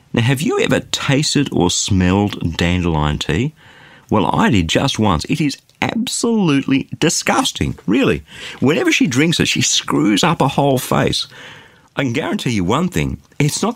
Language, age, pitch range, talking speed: English, 50-69, 90-140 Hz, 160 wpm